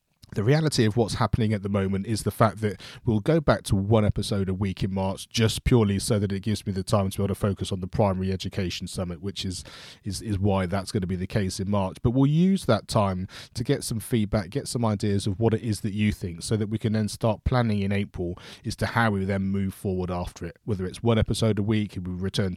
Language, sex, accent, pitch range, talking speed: English, male, British, 95-110 Hz, 265 wpm